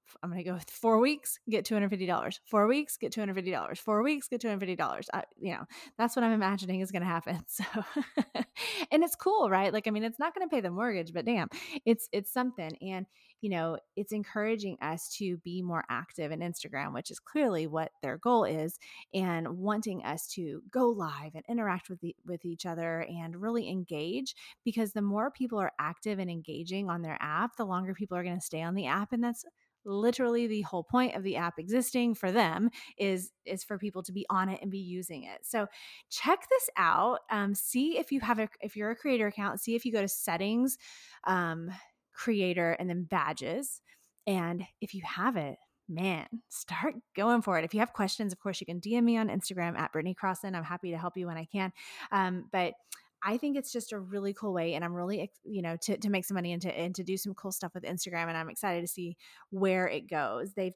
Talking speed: 225 wpm